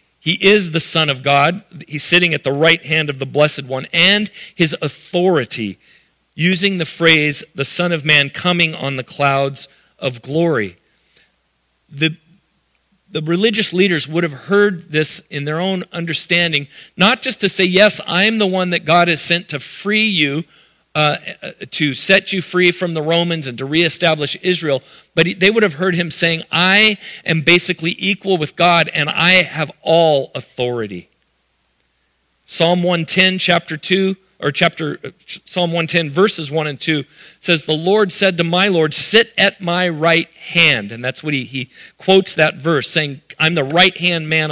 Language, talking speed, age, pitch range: English, 175 wpm, 50-69, 150-185 Hz